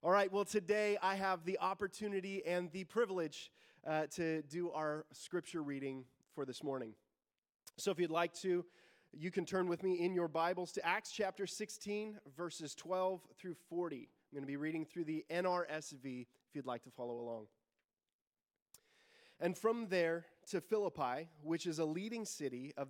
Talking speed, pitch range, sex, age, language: 175 wpm, 150-195 Hz, male, 30-49, English